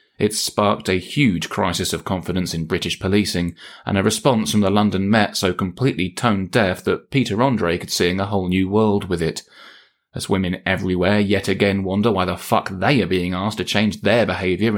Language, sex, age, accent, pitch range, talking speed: English, male, 30-49, British, 90-115 Hz, 195 wpm